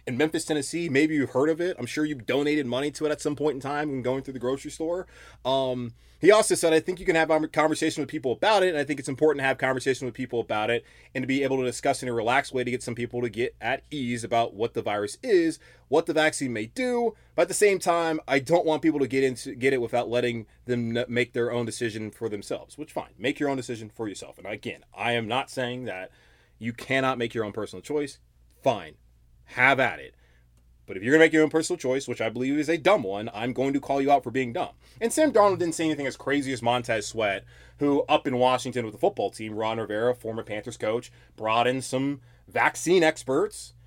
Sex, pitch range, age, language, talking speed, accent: male, 120-160 Hz, 20-39, English, 250 wpm, American